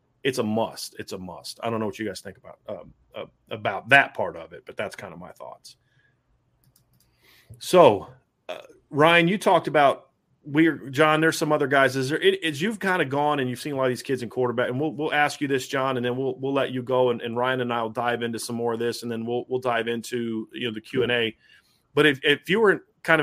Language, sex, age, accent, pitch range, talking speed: English, male, 30-49, American, 120-150 Hz, 255 wpm